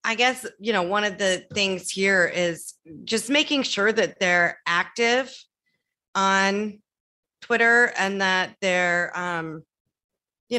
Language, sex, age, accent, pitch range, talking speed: English, female, 30-49, American, 175-220 Hz, 130 wpm